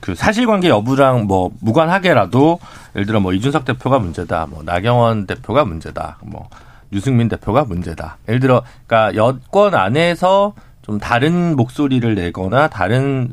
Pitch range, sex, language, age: 100-135 Hz, male, Korean, 40-59